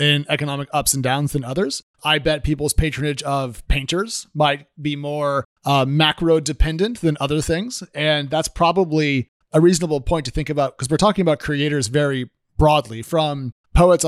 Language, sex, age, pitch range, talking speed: English, male, 30-49, 140-175 Hz, 170 wpm